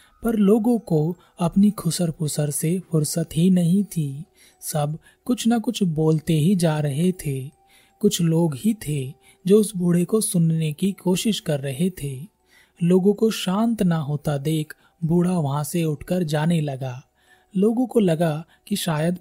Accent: native